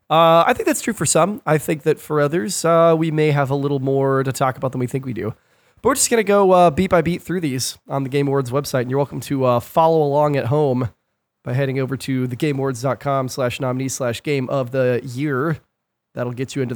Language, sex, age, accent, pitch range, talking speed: English, male, 30-49, American, 130-165 Hz, 245 wpm